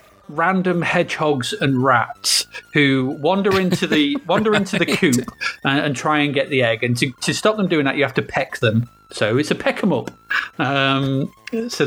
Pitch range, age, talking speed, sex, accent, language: 130-180 Hz, 30-49, 185 wpm, male, British, English